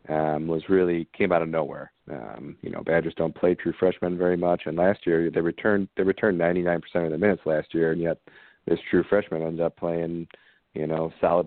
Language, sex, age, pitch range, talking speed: English, male, 40-59, 80-90 Hz, 215 wpm